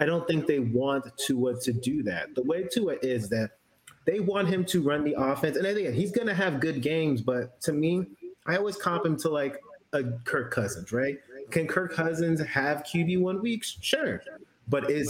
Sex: male